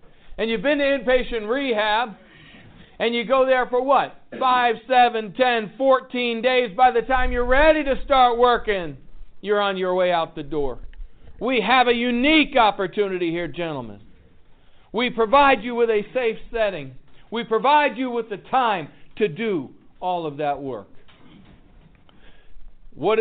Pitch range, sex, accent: 170-245 Hz, male, American